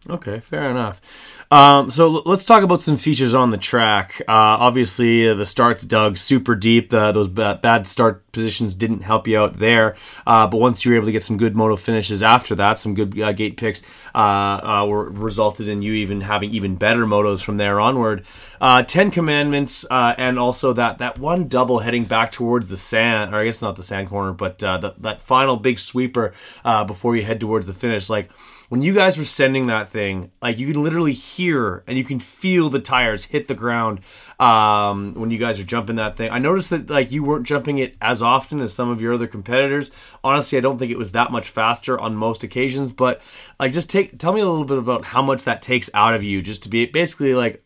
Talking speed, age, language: 225 wpm, 30-49, English